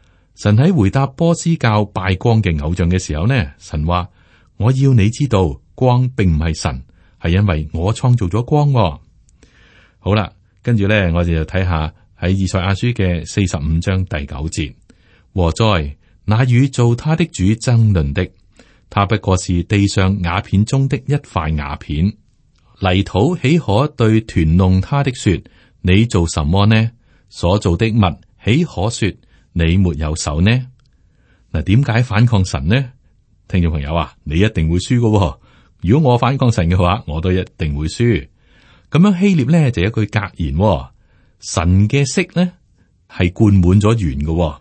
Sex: male